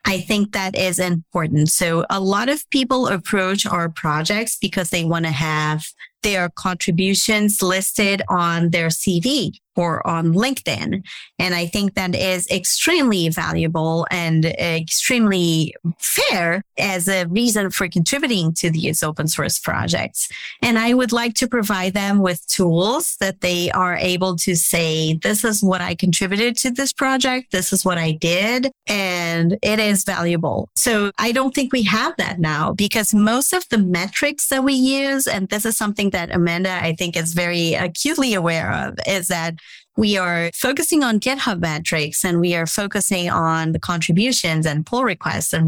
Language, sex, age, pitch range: English, female, 30-49, 170-220 Hz